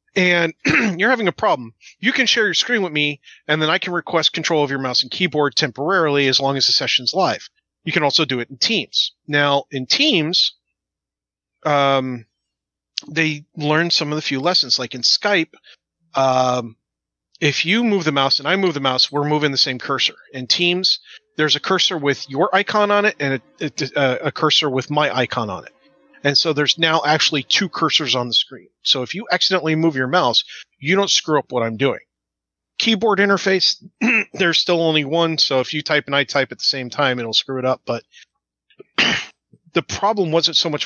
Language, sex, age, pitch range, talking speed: English, male, 30-49, 135-175 Hz, 205 wpm